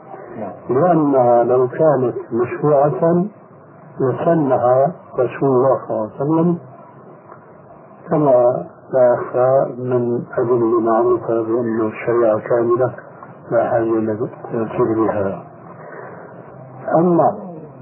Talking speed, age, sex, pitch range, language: 80 wpm, 60-79, male, 125-160 Hz, Arabic